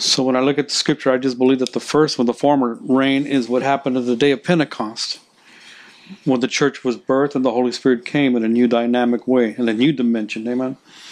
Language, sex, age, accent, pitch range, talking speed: English, male, 50-69, American, 120-135 Hz, 245 wpm